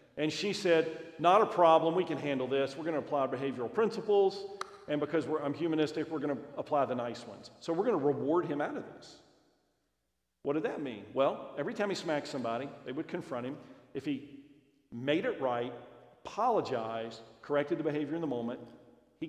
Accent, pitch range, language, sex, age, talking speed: American, 135-185 Hz, English, male, 40-59, 195 wpm